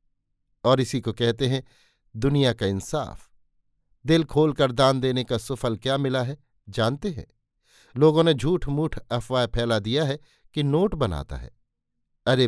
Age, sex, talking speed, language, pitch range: 50-69, male, 160 wpm, Hindi, 115-145 Hz